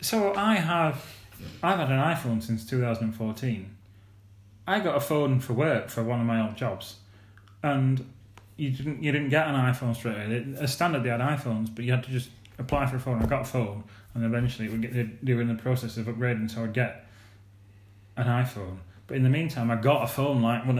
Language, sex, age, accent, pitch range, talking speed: English, male, 30-49, British, 115-135 Hz, 220 wpm